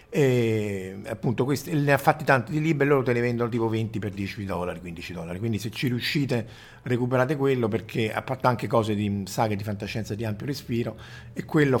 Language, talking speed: Italian, 205 wpm